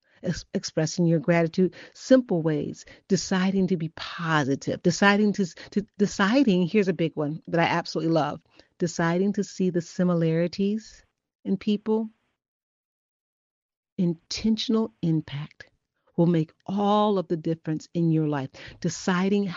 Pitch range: 170-205 Hz